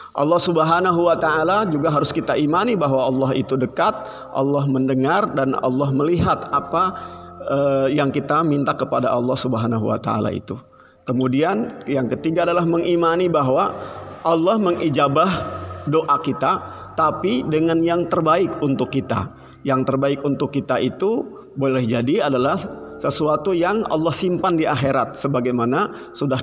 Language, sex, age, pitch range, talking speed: Indonesian, male, 50-69, 125-160 Hz, 135 wpm